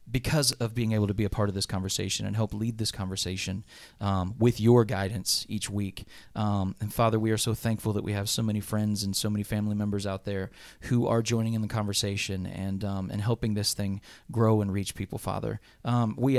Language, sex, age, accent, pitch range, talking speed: English, male, 30-49, American, 100-115 Hz, 225 wpm